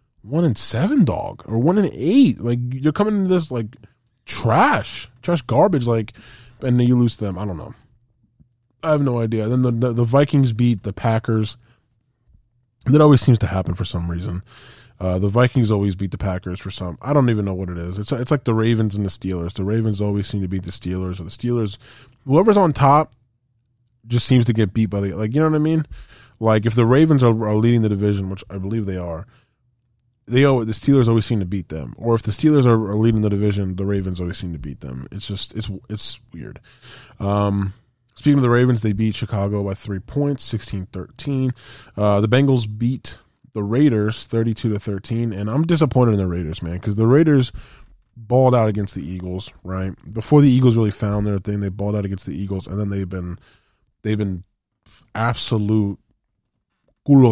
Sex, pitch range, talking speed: male, 100-125 Hz, 205 wpm